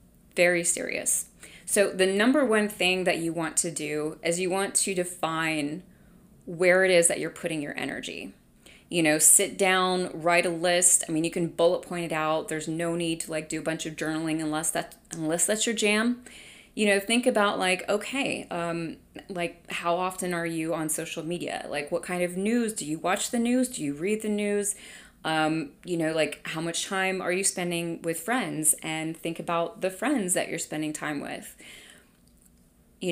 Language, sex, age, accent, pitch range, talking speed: English, female, 30-49, American, 160-200 Hz, 195 wpm